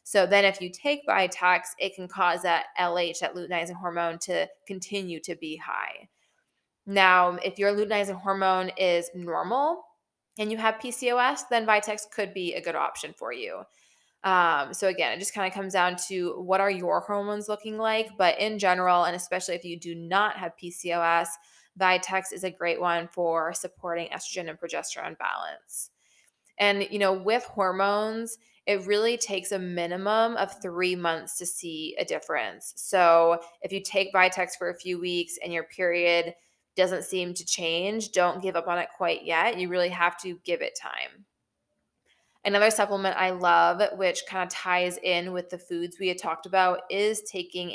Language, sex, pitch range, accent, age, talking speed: English, female, 175-200 Hz, American, 20-39, 180 wpm